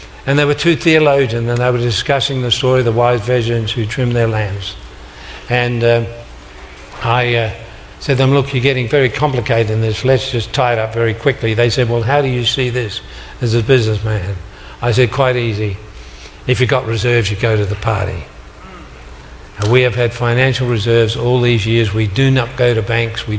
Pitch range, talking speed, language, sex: 95-125 Hz, 205 wpm, English, male